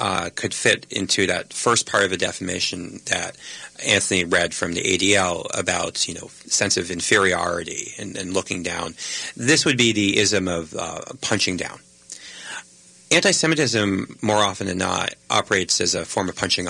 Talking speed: 165 wpm